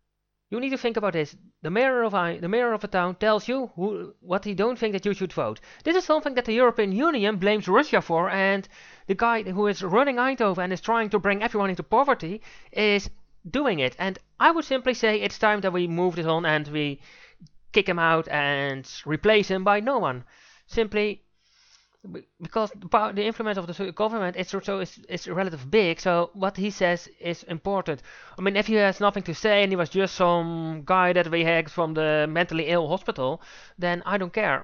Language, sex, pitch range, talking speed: English, male, 165-215 Hz, 215 wpm